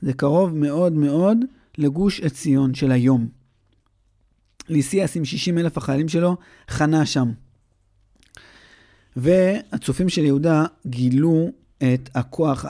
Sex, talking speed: male, 105 wpm